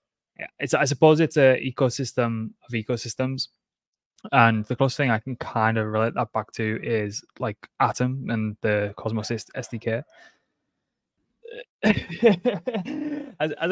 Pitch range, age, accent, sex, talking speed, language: 110-135 Hz, 20-39, British, male, 130 wpm, English